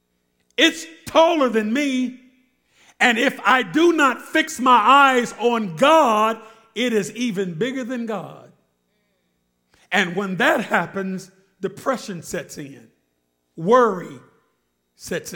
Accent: American